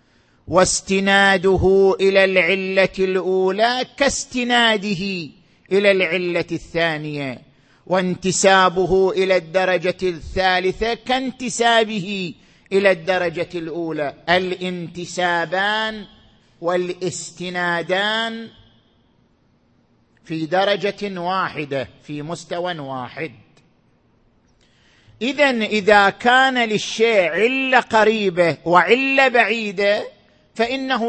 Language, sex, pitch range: Arabic, male, 175-215 Hz